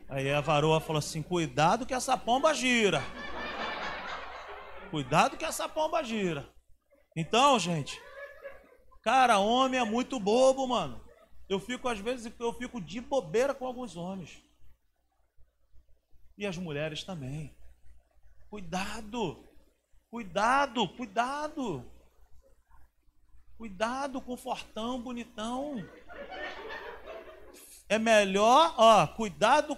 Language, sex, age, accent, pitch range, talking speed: Portuguese, male, 40-59, Brazilian, 170-265 Hz, 100 wpm